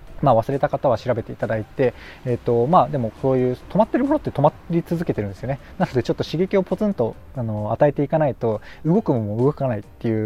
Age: 20-39